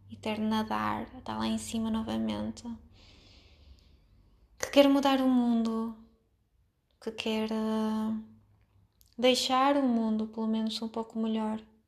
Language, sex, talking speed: Portuguese, female, 115 wpm